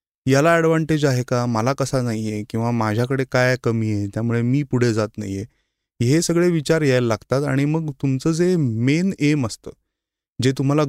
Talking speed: 165 wpm